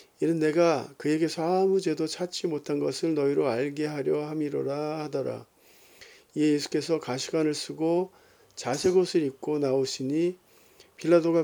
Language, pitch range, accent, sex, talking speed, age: Portuguese, 145-170 Hz, Korean, male, 110 wpm, 50-69